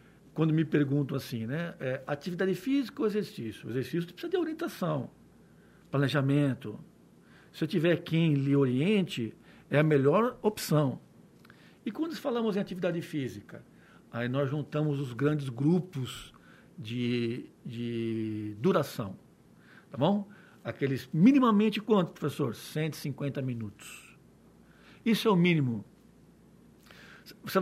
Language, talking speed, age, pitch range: Portuguese, 115 wpm, 60-79, 140-200 Hz